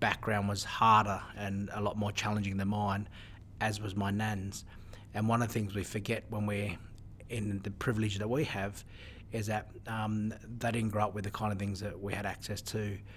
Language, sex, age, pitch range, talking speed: English, male, 30-49, 100-110 Hz, 210 wpm